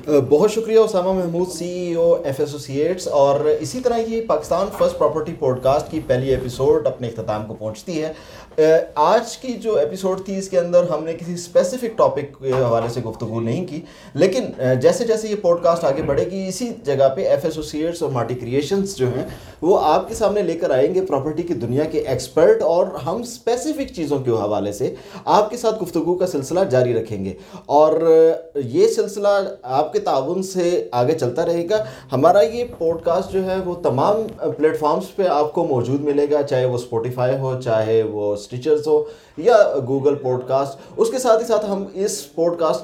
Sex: male